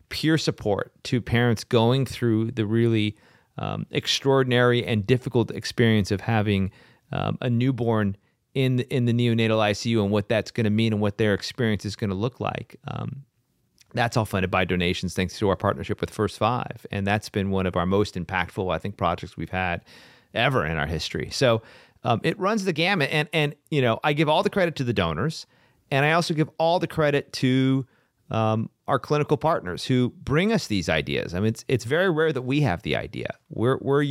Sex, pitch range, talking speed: male, 105-135 Hz, 205 wpm